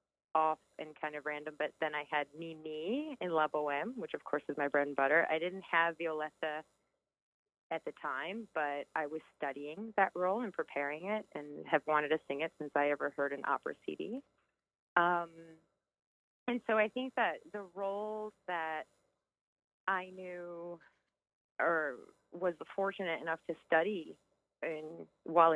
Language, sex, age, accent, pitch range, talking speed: English, female, 30-49, American, 150-185 Hz, 160 wpm